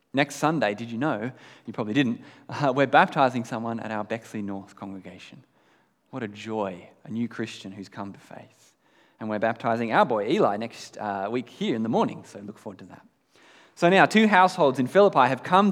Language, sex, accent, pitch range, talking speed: English, male, Australian, 110-160 Hz, 200 wpm